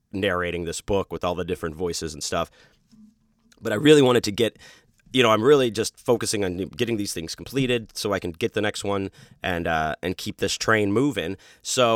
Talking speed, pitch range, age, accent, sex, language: 210 wpm, 90-110 Hz, 30-49, American, male, English